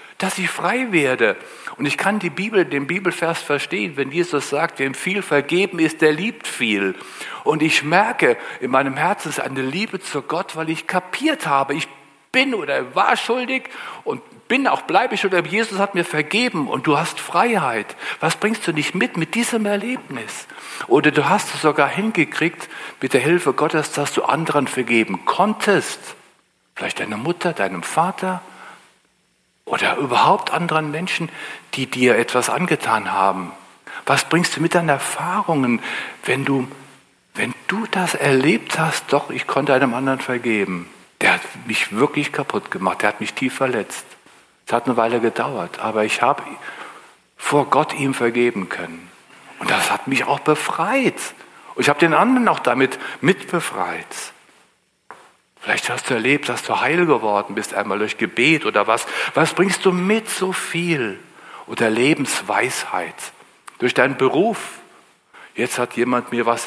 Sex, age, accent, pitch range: male, 60-79, German, 130-185 Hz